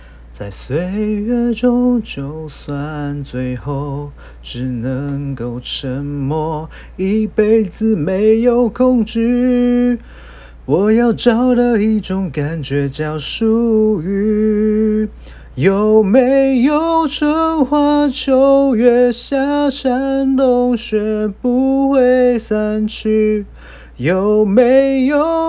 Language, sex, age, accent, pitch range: Chinese, male, 30-49, native, 210-285 Hz